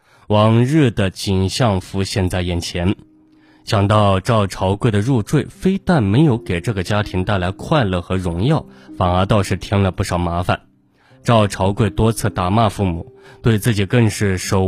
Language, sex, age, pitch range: Chinese, male, 20-39, 95-125 Hz